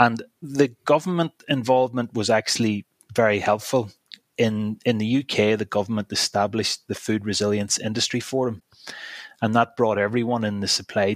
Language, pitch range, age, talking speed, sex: English, 100-115 Hz, 30-49, 145 wpm, male